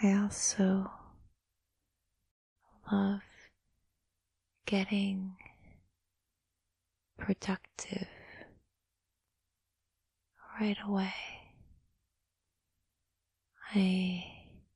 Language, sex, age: English, female, 20-39